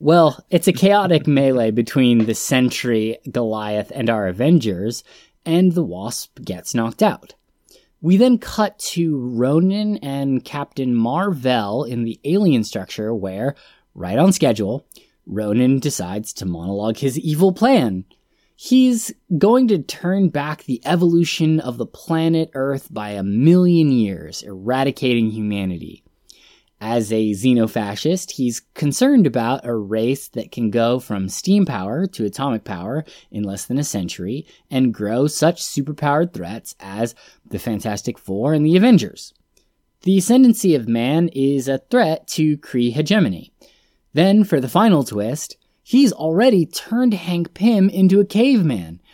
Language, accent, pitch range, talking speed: English, American, 110-175 Hz, 140 wpm